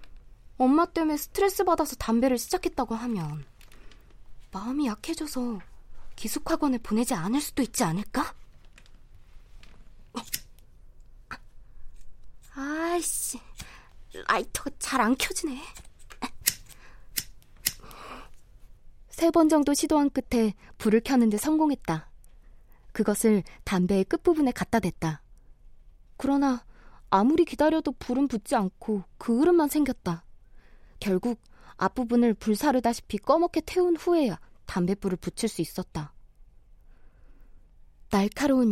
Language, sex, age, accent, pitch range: Korean, female, 20-39, native, 185-290 Hz